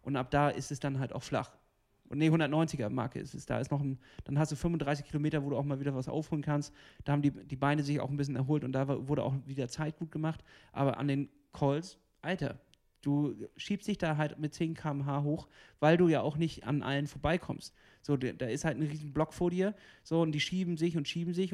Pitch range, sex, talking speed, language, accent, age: 140-160 Hz, male, 250 wpm, German, German, 30-49